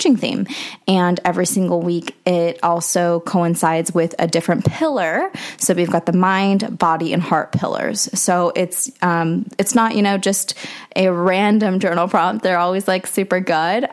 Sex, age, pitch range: female, 20-39, 175-215 Hz